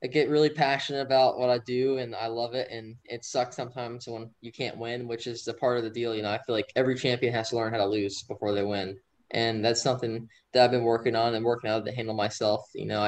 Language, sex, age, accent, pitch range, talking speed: English, male, 10-29, American, 110-130 Hz, 270 wpm